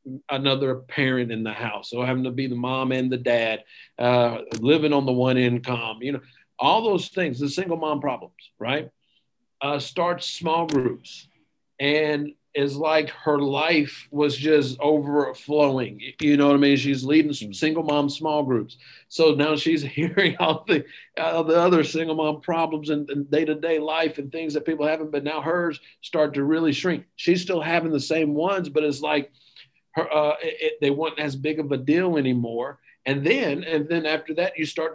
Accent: American